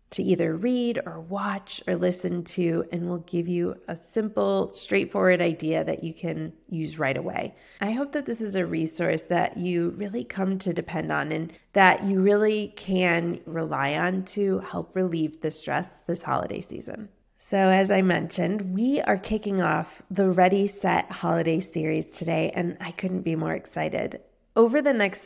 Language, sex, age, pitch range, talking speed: English, female, 20-39, 170-205 Hz, 175 wpm